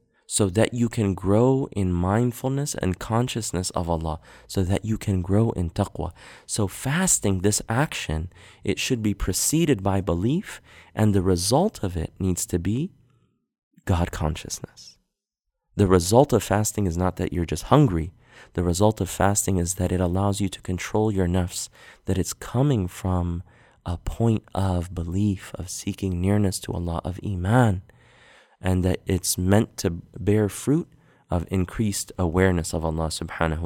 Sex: male